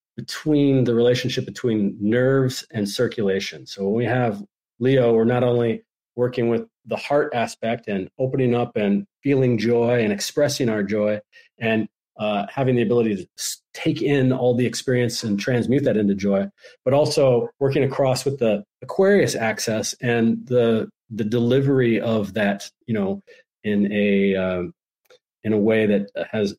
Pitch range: 110-130 Hz